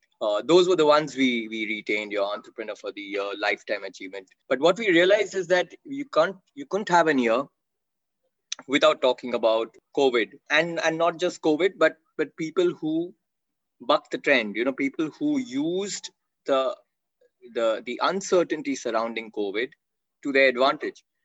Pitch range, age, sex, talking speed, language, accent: 120-165 Hz, 20-39, male, 165 wpm, English, Indian